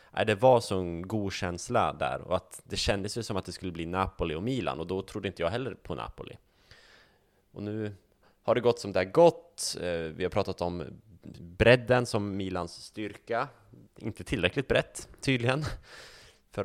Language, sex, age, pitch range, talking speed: Swedish, male, 20-39, 85-105 Hz, 185 wpm